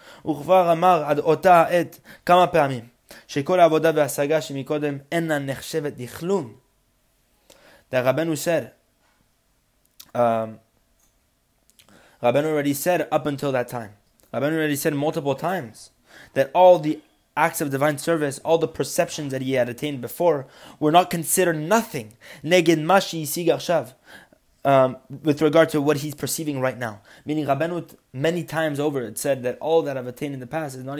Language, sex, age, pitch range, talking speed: English, male, 20-39, 130-160 Hz, 120 wpm